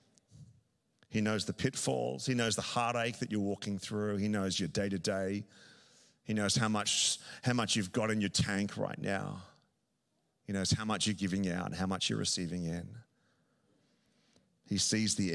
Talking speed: 175 wpm